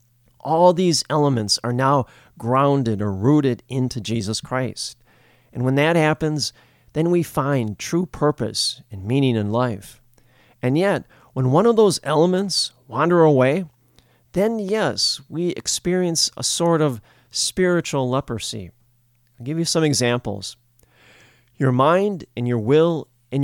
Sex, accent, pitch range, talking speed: male, American, 120-155 Hz, 135 wpm